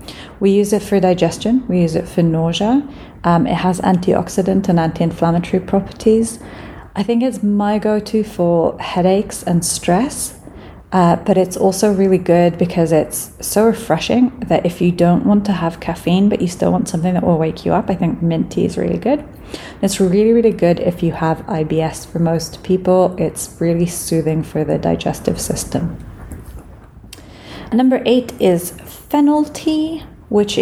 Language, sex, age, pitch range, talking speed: English, female, 30-49, 170-215 Hz, 165 wpm